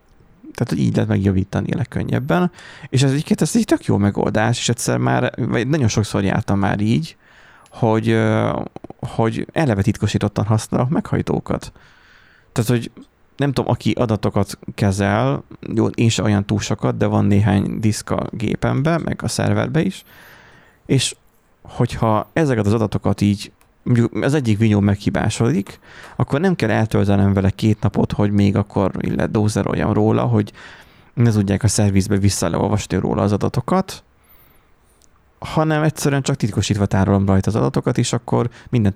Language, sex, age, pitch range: Hungarian, male, 30-49, 100-120 Hz